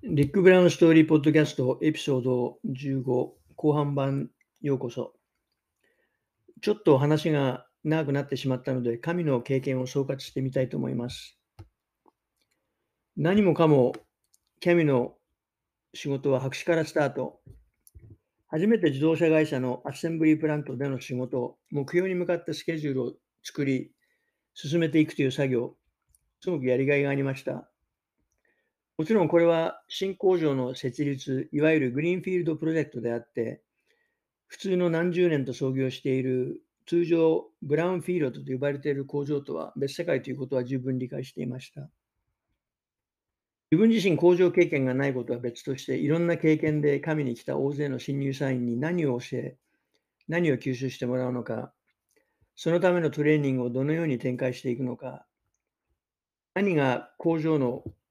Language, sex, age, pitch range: English, male, 50-69, 130-160 Hz